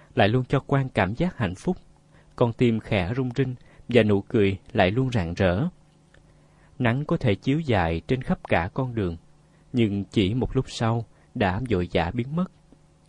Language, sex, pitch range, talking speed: Vietnamese, male, 105-145 Hz, 185 wpm